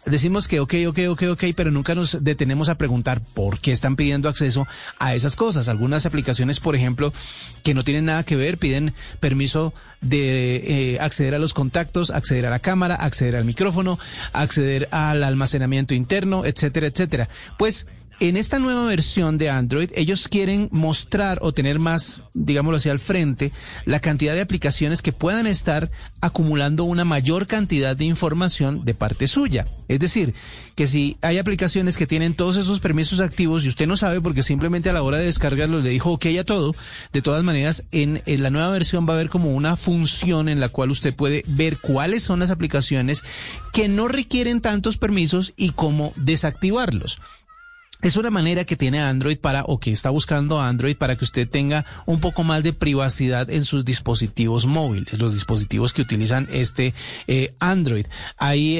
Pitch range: 135-175 Hz